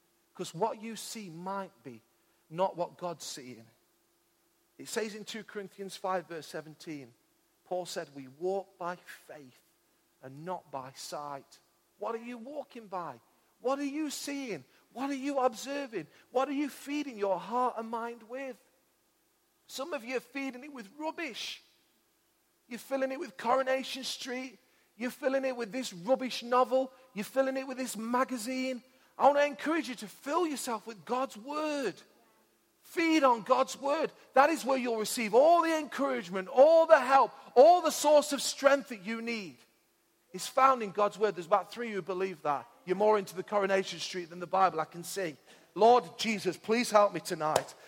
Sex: male